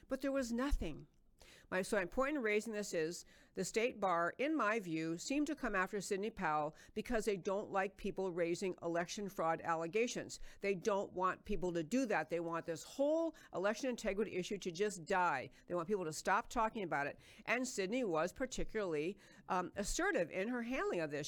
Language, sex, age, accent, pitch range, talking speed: English, female, 50-69, American, 180-225 Hz, 190 wpm